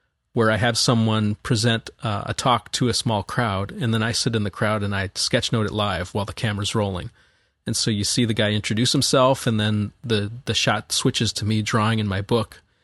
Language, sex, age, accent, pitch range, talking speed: English, male, 30-49, American, 105-120 Hz, 230 wpm